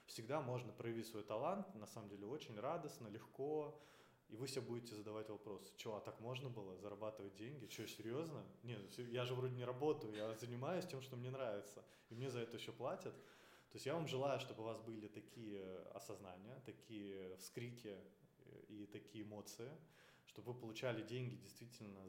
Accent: native